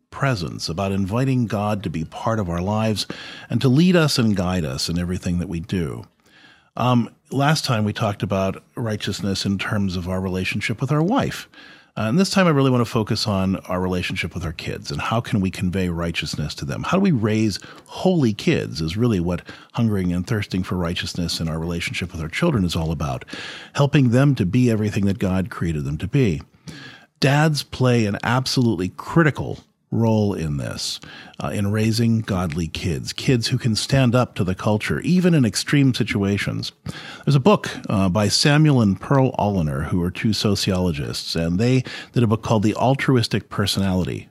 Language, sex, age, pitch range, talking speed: English, male, 40-59, 95-130 Hz, 190 wpm